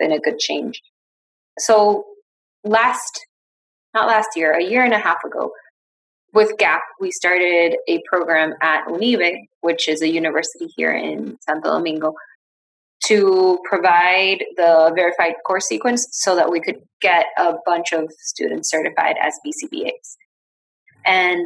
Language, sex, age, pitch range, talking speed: English, female, 20-39, 165-215 Hz, 140 wpm